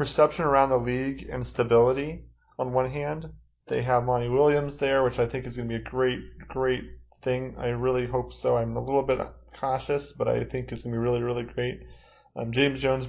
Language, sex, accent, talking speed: English, male, American, 215 wpm